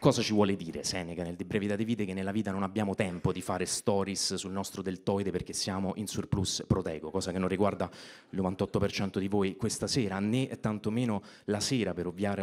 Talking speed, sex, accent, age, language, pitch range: 210 wpm, male, native, 30-49, Italian, 95-110 Hz